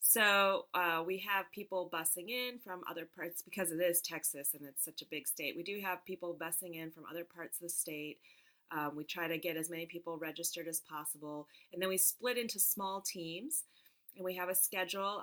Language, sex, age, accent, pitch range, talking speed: English, female, 30-49, American, 165-195 Hz, 215 wpm